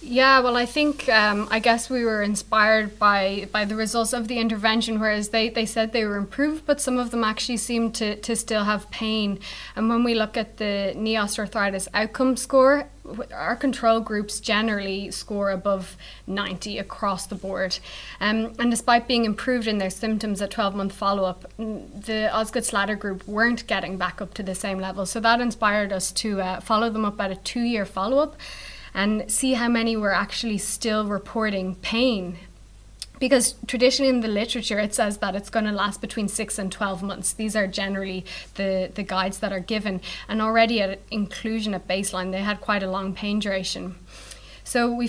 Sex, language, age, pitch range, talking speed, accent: female, English, 20-39, 200-230 Hz, 185 wpm, Irish